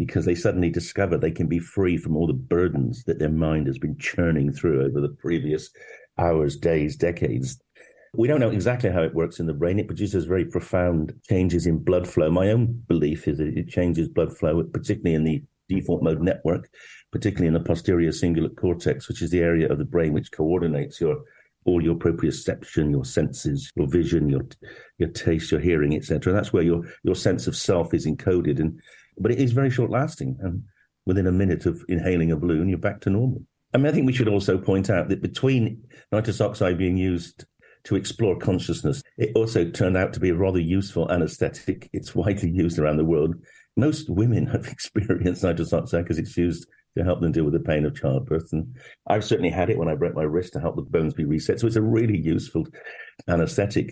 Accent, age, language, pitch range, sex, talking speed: British, 50-69, English, 85-110 Hz, male, 210 wpm